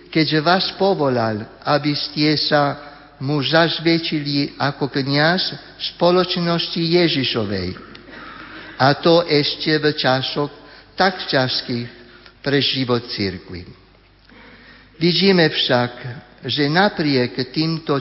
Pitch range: 140-170 Hz